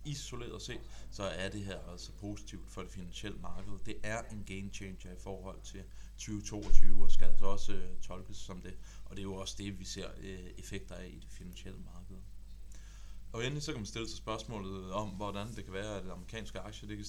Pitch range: 95-105 Hz